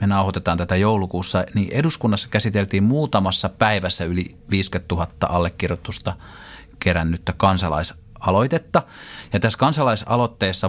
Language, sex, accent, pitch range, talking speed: Finnish, male, native, 90-110 Hz, 100 wpm